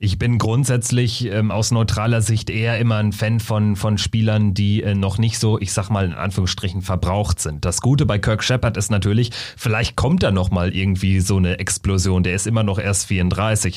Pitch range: 100-120 Hz